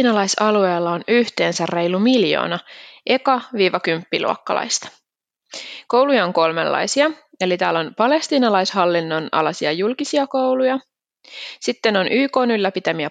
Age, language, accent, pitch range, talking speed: 20-39, Finnish, native, 175-245 Hz, 90 wpm